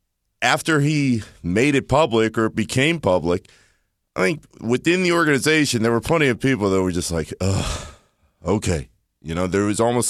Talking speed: 165 wpm